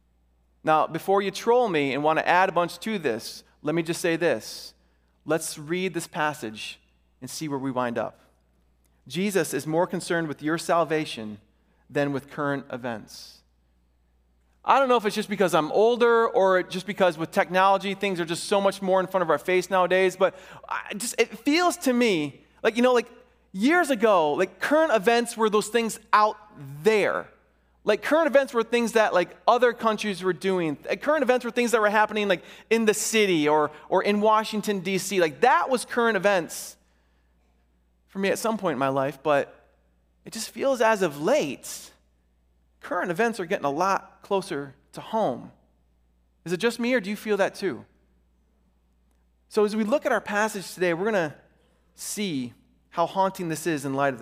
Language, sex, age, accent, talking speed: English, male, 30-49, American, 190 wpm